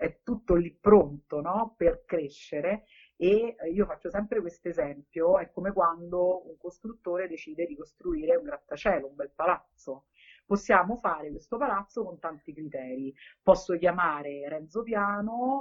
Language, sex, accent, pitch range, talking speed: Italian, female, native, 155-205 Hz, 140 wpm